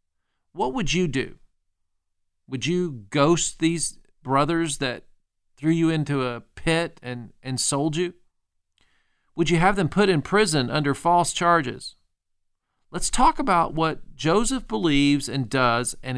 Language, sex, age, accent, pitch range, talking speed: English, male, 40-59, American, 125-175 Hz, 140 wpm